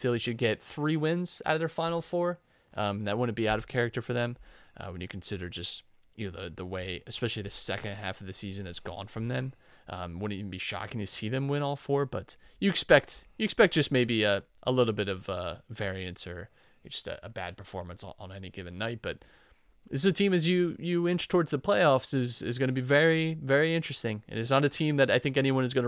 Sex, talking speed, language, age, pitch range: male, 245 wpm, English, 30-49, 100-130 Hz